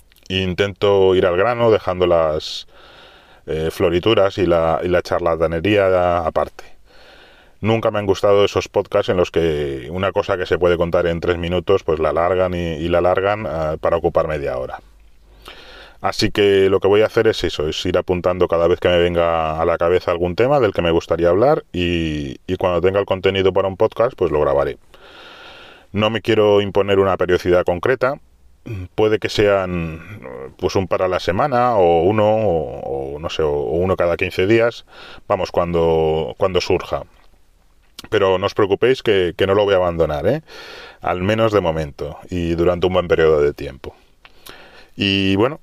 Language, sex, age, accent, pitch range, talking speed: Spanish, male, 30-49, Spanish, 85-100 Hz, 180 wpm